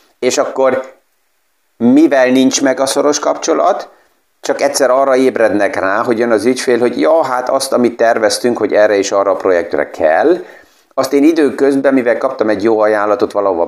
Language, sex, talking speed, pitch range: Hungarian, male, 170 wpm, 110-155 Hz